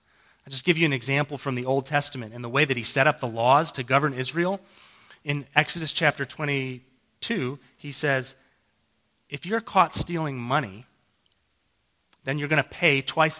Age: 30-49